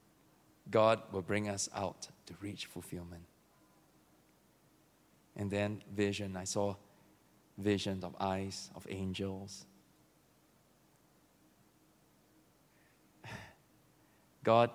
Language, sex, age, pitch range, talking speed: English, male, 20-39, 100-140 Hz, 75 wpm